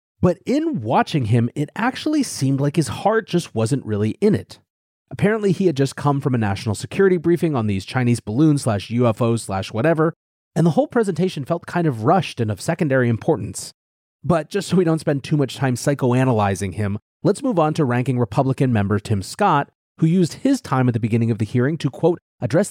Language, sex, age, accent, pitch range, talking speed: English, male, 30-49, American, 115-170 Hz, 205 wpm